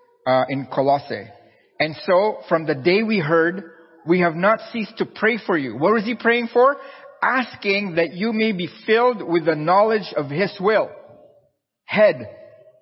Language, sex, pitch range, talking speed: English, male, 155-240 Hz, 170 wpm